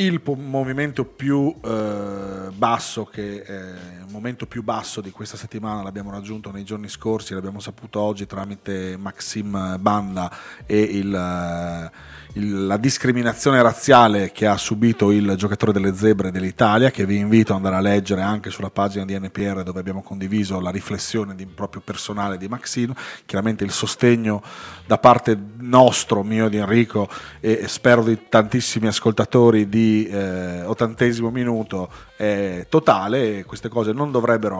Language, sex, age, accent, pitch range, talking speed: Italian, male, 40-59, native, 95-115 Hz, 150 wpm